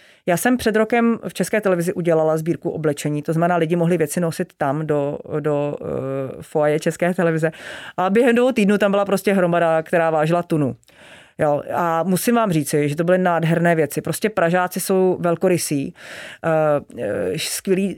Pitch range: 160-185 Hz